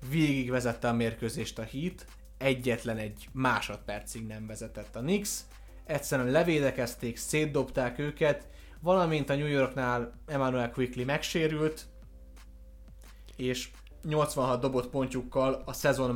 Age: 20-39